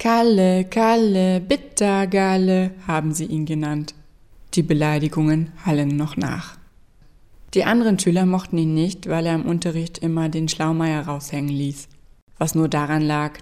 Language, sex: German, female